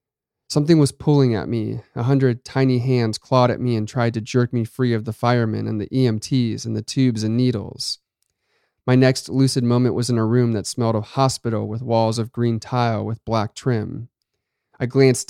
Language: English